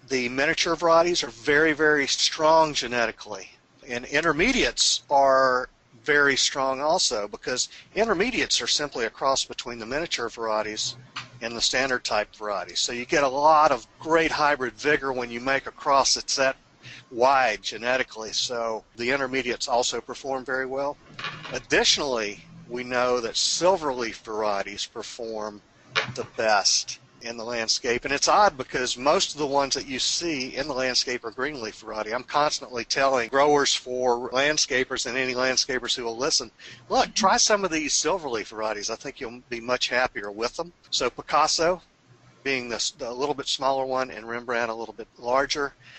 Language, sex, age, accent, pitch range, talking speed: English, male, 50-69, American, 120-145 Hz, 165 wpm